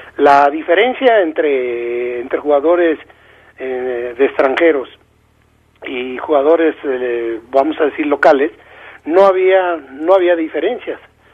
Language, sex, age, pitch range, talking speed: Spanish, male, 40-59, 140-175 Hz, 105 wpm